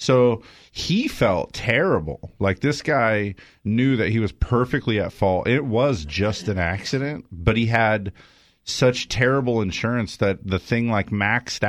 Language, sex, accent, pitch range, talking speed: English, male, American, 95-120 Hz, 155 wpm